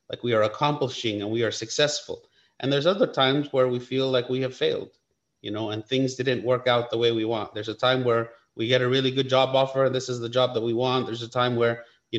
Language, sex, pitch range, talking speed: English, male, 115-135 Hz, 265 wpm